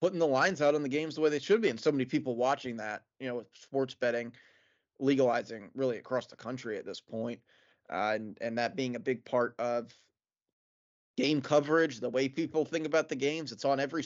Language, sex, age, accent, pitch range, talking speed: English, male, 20-39, American, 120-150 Hz, 220 wpm